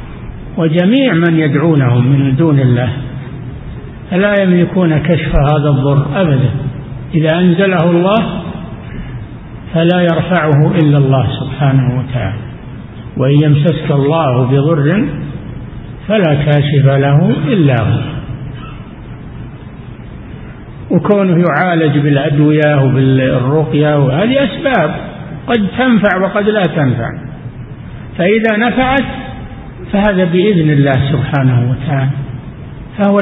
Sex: male